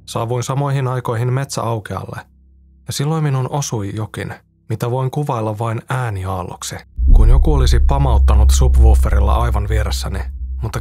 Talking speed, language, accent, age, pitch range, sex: 120 wpm, Finnish, native, 20-39, 90-125 Hz, male